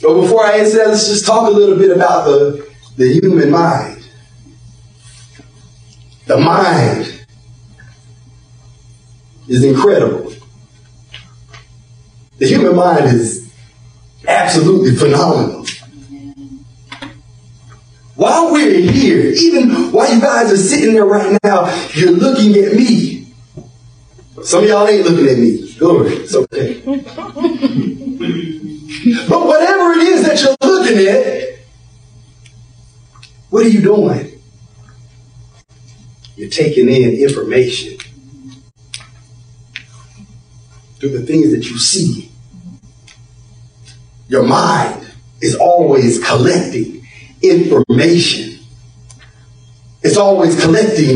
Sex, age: male, 40-59